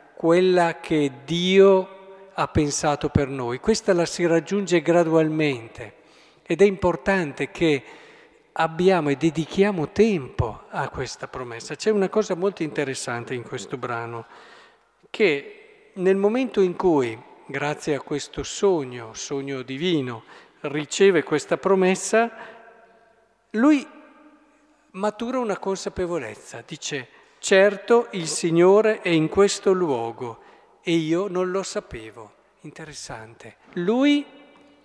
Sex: male